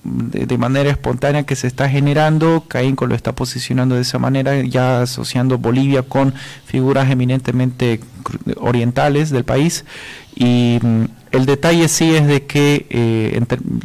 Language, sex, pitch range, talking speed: Spanish, male, 125-150 Hz, 135 wpm